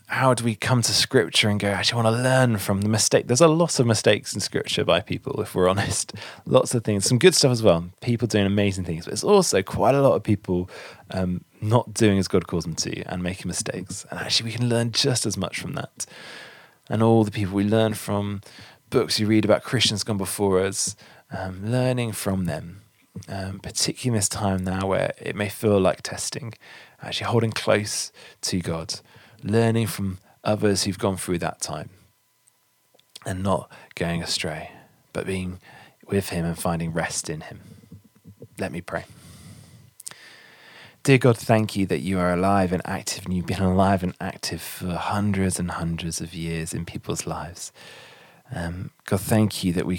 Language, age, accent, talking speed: English, 20-39, British, 190 wpm